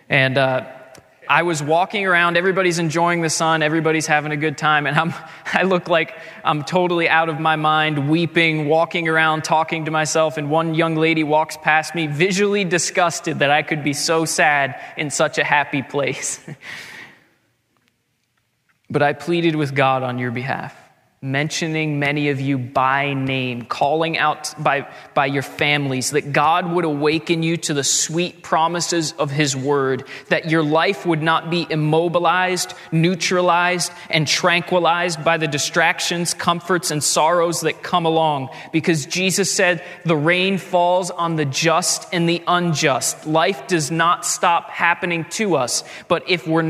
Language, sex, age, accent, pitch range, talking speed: English, male, 20-39, American, 150-175 Hz, 160 wpm